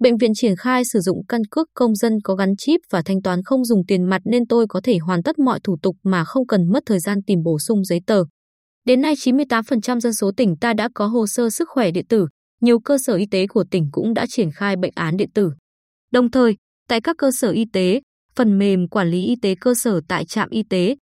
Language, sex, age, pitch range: Vietnamese, female, 20-39, 190-245 Hz